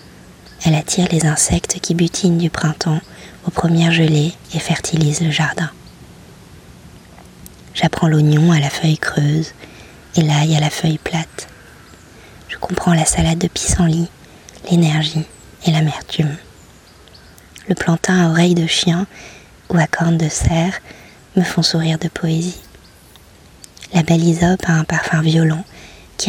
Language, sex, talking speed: French, female, 135 wpm